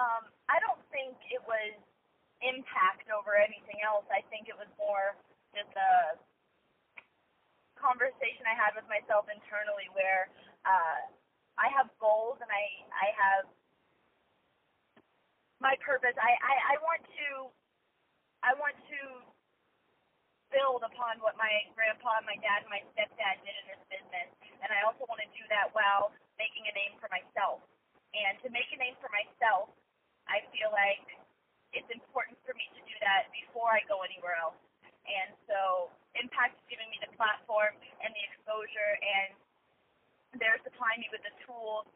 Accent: American